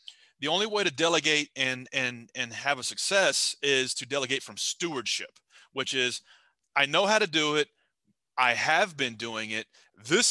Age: 30-49